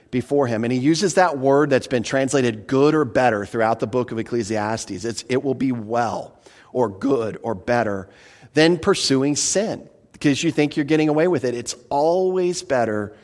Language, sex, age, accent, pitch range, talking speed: English, male, 40-59, American, 125-175 Hz, 185 wpm